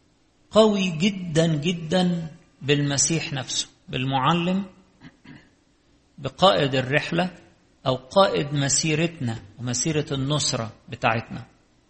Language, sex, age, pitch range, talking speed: English, male, 50-69, 135-180 Hz, 70 wpm